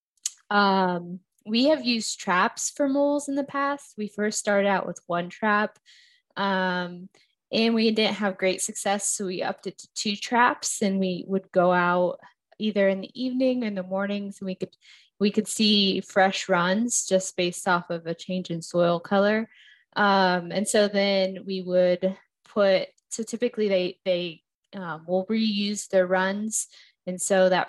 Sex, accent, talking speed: female, American, 175 wpm